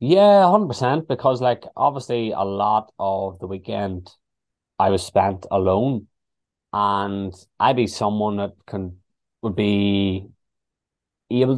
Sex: male